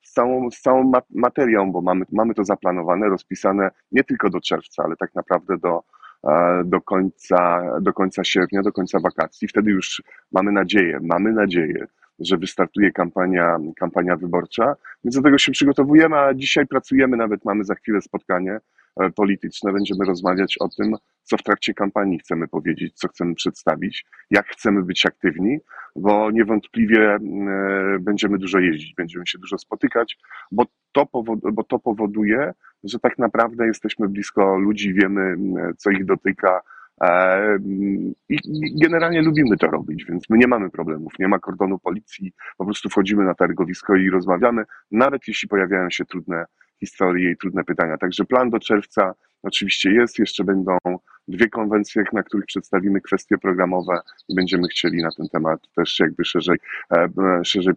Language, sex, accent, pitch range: Polish, male, native, 90-110 Hz